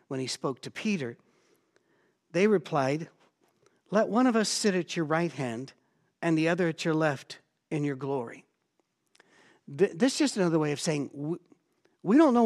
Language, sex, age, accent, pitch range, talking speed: English, male, 60-79, American, 145-180 Hz, 170 wpm